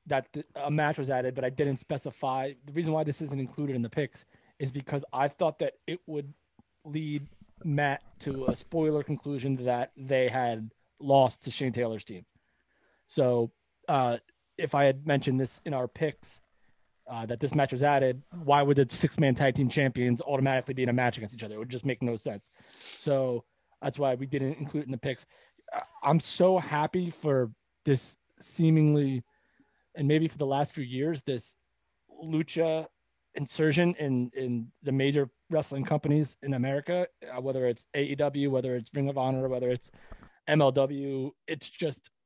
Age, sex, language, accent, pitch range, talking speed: 20-39, male, English, American, 130-155 Hz, 175 wpm